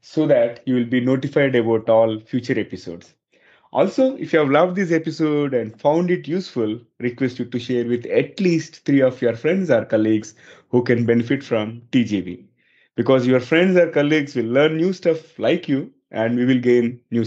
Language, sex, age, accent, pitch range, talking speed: English, male, 30-49, Indian, 120-165 Hz, 190 wpm